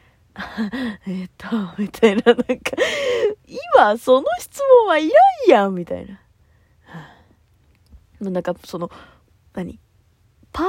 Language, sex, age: Japanese, female, 20-39